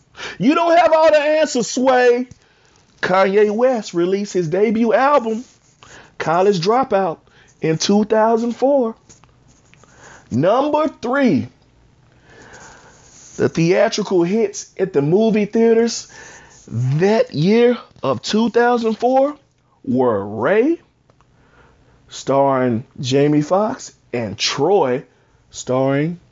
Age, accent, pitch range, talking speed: 40-59, American, 145-230 Hz, 85 wpm